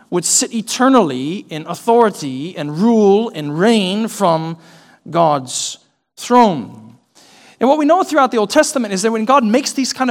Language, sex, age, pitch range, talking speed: English, male, 40-59, 150-230 Hz, 160 wpm